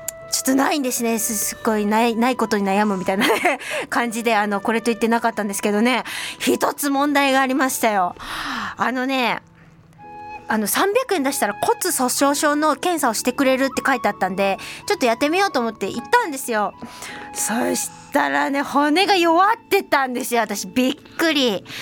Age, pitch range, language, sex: 20-39, 220-295 Hz, Japanese, female